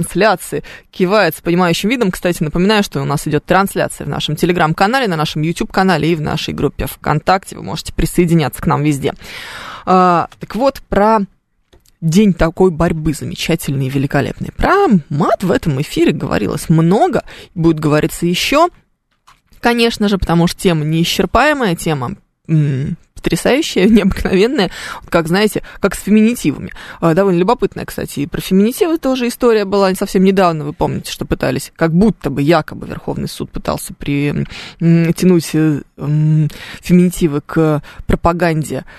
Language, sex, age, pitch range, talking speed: Russian, female, 20-39, 155-190 Hz, 135 wpm